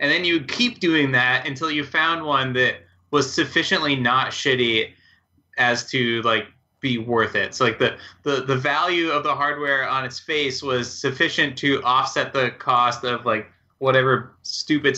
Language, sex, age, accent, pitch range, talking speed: English, male, 20-39, American, 120-170 Hz, 175 wpm